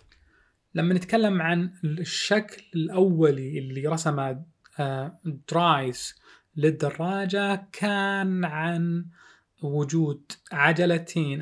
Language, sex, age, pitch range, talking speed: Arabic, male, 20-39, 150-185 Hz, 70 wpm